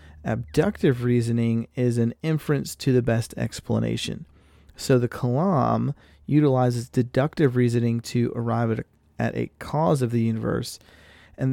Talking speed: 135 wpm